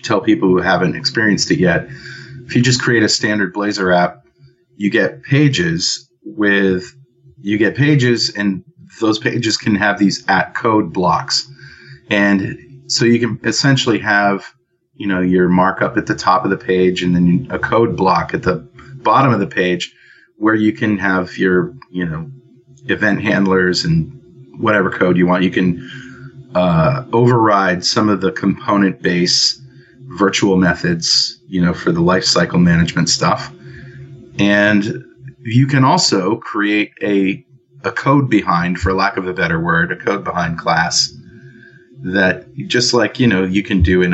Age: 30-49